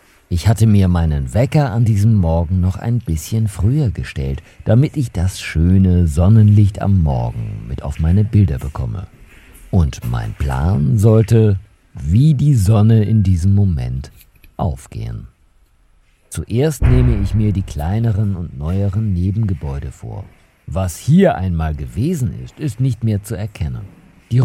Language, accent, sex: German, German, male